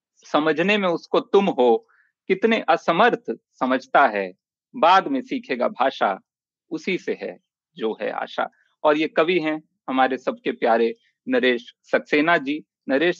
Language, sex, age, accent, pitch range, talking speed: Hindi, male, 40-59, native, 145-195 Hz, 135 wpm